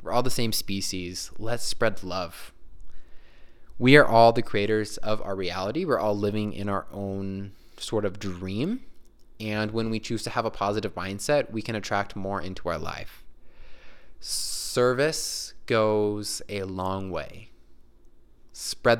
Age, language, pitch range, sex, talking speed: 20-39, English, 95-115 Hz, male, 150 wpm